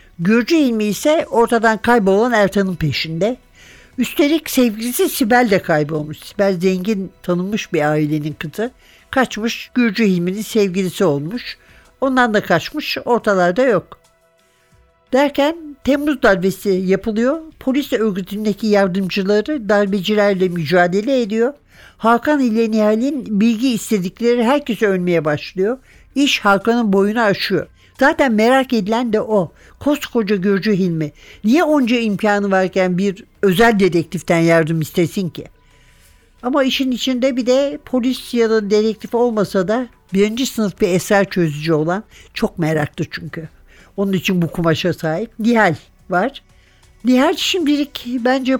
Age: 60-79